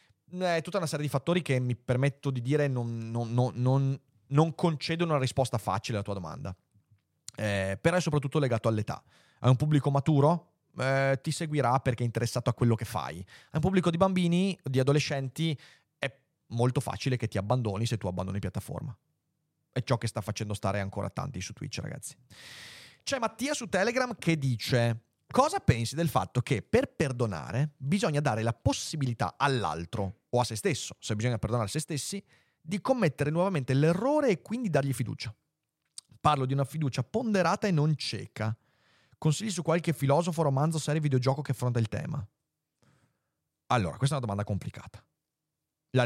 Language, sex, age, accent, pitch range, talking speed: Italian, male, 30-49, native, 115-155 Hz, 170 wpm